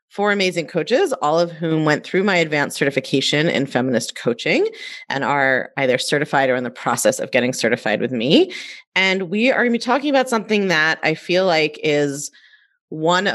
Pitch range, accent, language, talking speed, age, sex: 140-180 Hz, American, English, 190 wpm, 30-49, female